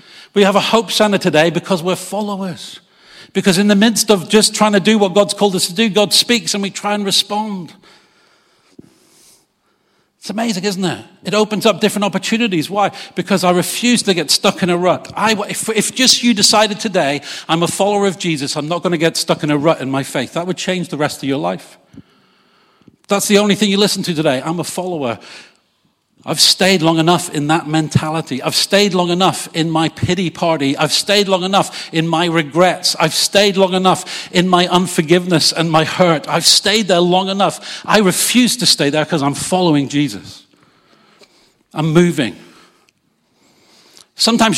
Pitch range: 160-200 Hz